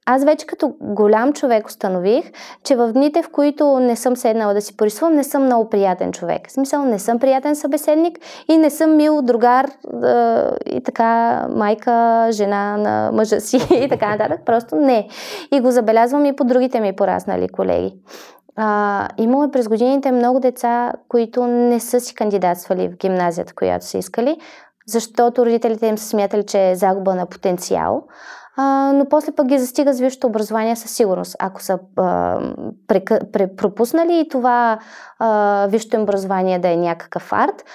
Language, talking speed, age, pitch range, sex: Bulgarian, 160 wpm, 20-39, 210-275 Hz, female